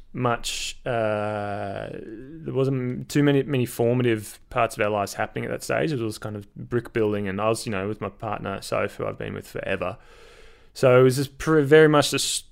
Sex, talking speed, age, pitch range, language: male, 205 wpm, 20-39, 100-125 Hz, English